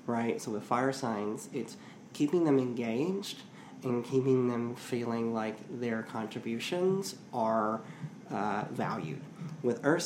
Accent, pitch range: American, 120-140 Hz